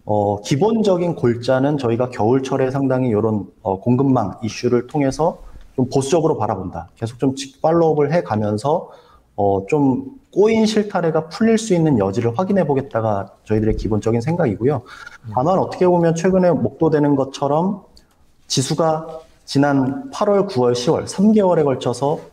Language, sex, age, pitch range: Korean, male, 30-49, 115-175 Hz